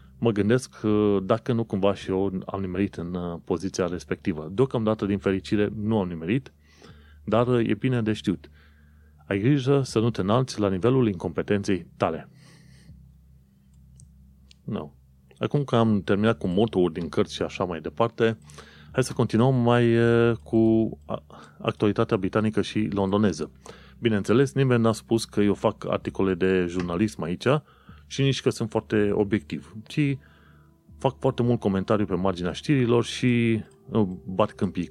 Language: Romanian